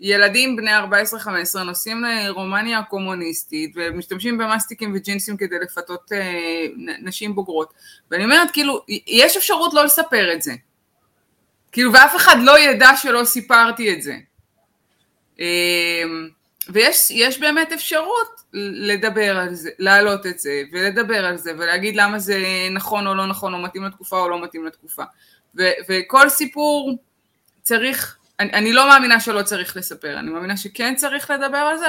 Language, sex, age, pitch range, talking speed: Hebrew, female, 20-39, 185-235 Hz, 140 wpm